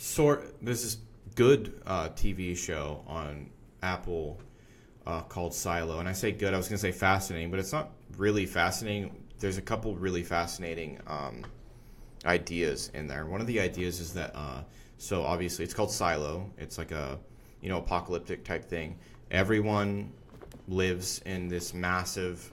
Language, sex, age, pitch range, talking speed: English, male, 20-39, 85-110 Hz, 160 wpm